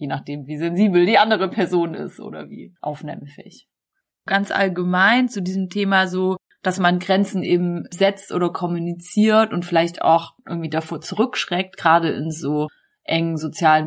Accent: German